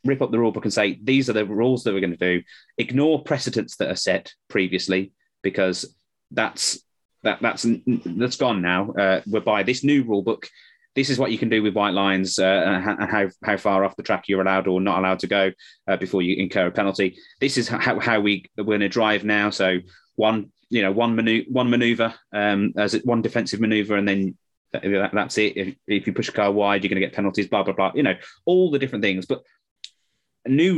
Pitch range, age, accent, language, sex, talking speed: 100-130 Hz, 20-39, British, English, male, 230 wpm